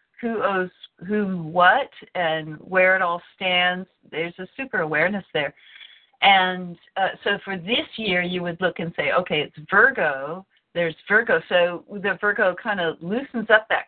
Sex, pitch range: female, 175-210 Hz